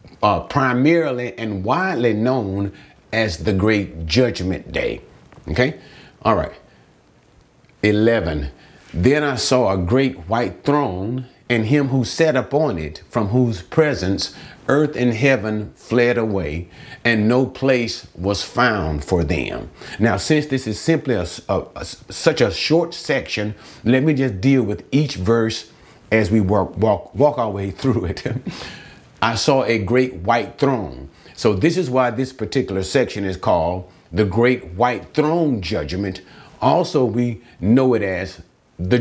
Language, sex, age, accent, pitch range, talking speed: English, male, 40-59, American, 100-135 Hz, 150 wpm